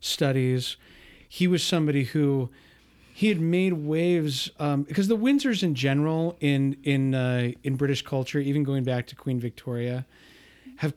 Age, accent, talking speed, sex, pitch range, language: 40-59, American, 155 wpm, male, 125-150 Hz, English